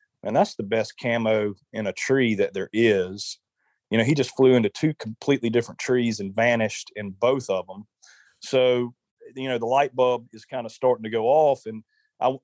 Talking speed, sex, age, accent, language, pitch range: 205 wpm, male, 30-49, American, English, 110-125 Hz